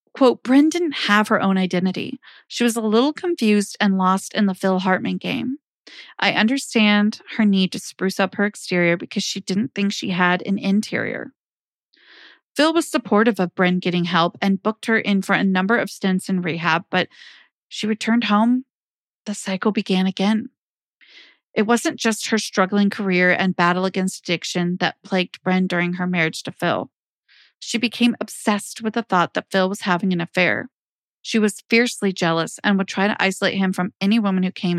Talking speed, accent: 185 wpm, American